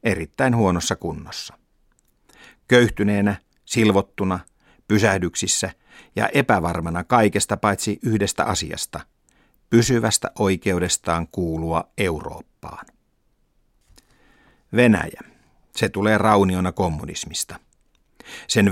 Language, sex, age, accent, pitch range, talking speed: Finnish, male, 50-69, native, 90-105 Hz, 70 wpm